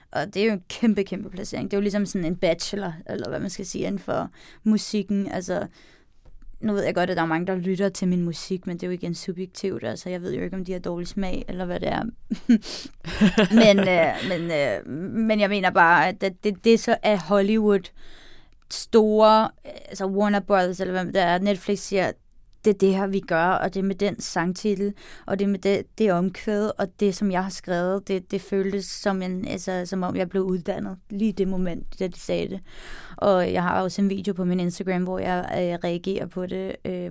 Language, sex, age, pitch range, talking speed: Danish, female, 20-39, 180-200 Hz, 225 wpm